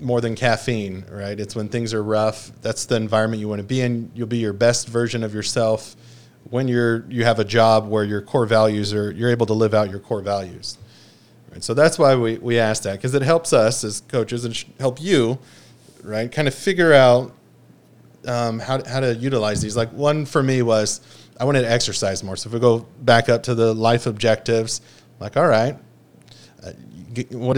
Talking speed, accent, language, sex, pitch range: 205 wpm, American, English, male, 105-125 Hz